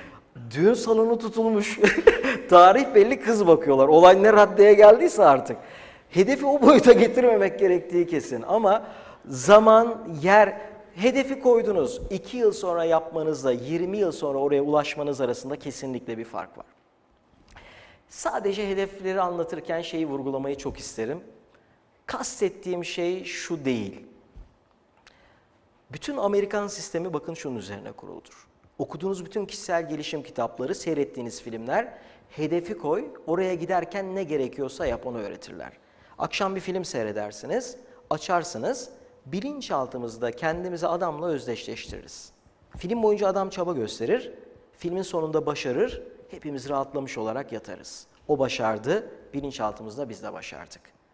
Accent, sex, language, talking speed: native, male, Turkish, 115 wpm